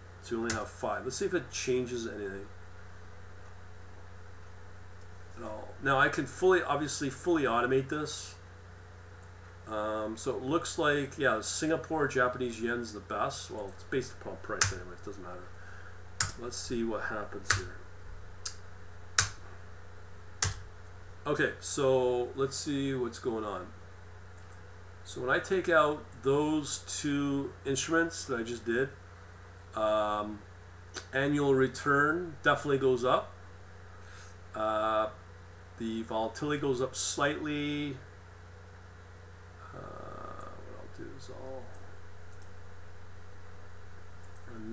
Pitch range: 90-130 Hz